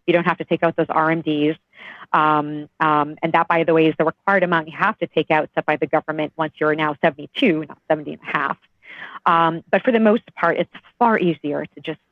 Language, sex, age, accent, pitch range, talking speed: English, female, 40-59, American, 165-200 Hz, 240 wpm